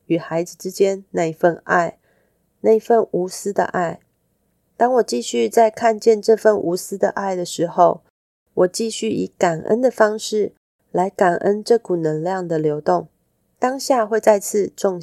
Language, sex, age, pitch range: Chinese, female, 30-49, 165-215 Hz